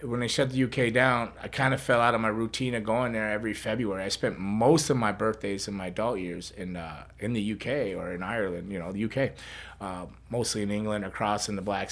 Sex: male